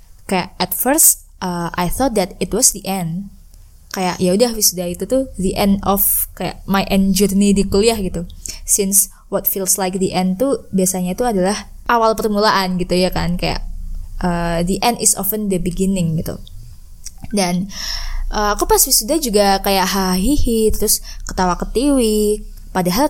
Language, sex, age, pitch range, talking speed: Indonesian, female, 20-39, 185-220 Hz, 160 wpm